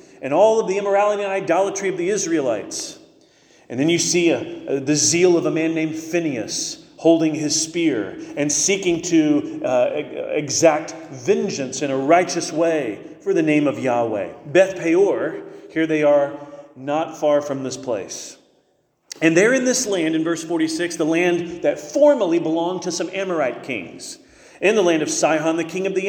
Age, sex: 40-59, male